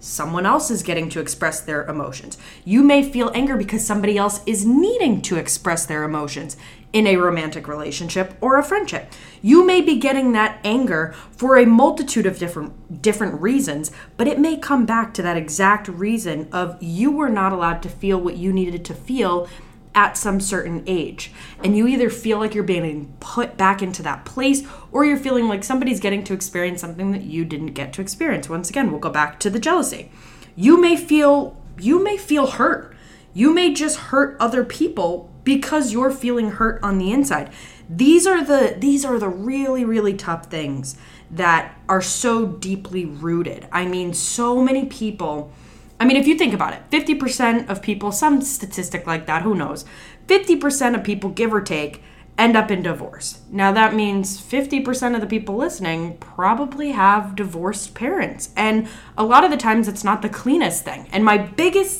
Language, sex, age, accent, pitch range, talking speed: English, female, 20-39, American, 170-255 Hz, 185 wpm